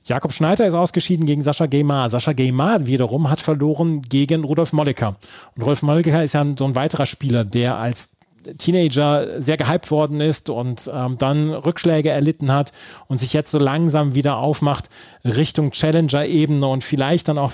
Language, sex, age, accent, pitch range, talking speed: German, male, 30-49, German, 130-155 Hz, 170 wpm